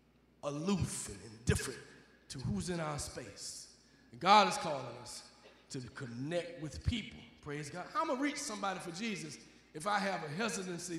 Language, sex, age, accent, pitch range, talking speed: English, male, 40-59, American, 145-230 Hz, 175 wpm